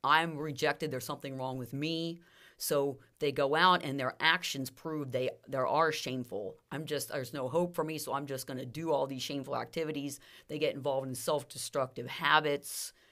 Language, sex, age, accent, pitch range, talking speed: English, female, 40-59, American, 130-165 Hz, 190 wpm